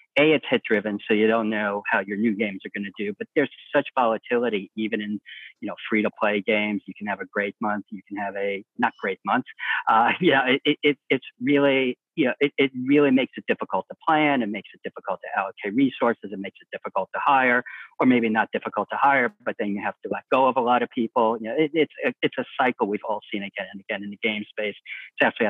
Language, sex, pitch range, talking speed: English, male, 105-125 Hz, 240 wpm